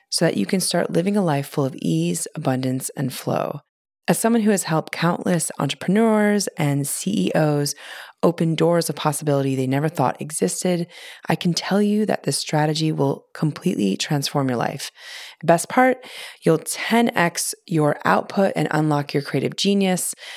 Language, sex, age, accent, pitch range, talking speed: English, female, 30-49, American, 145-190 Hz, 160 wpm